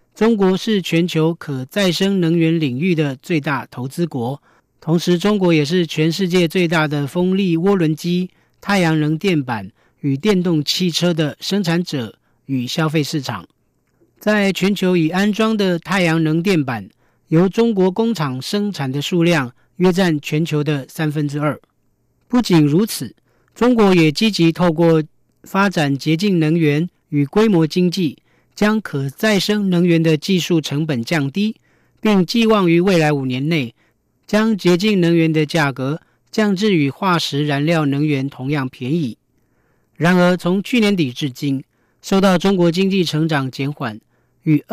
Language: German